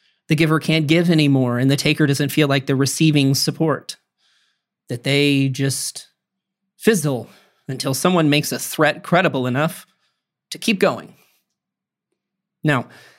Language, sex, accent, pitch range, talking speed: English, male, American, 140-180 Hz, 130 wpm